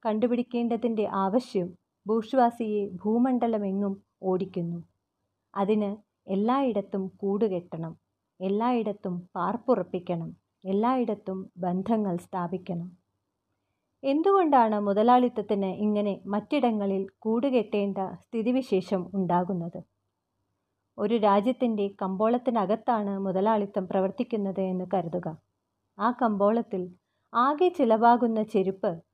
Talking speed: 65 wpm